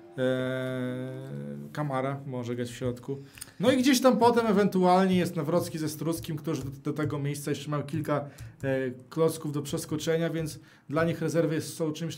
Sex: male